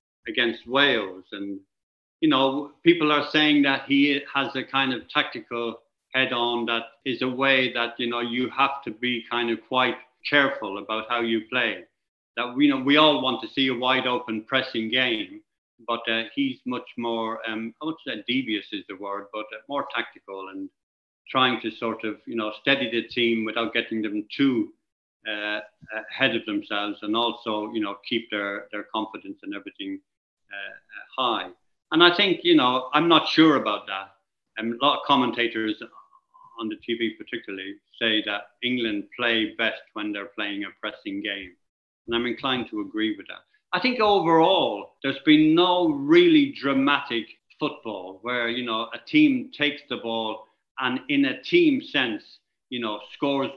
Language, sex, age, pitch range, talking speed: English, male, 50-69, 115-160 Hz, 175 wpm